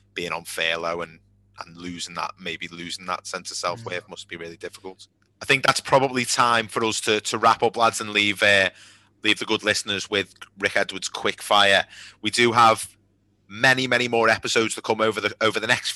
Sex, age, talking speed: male, 30-49, 205 wpm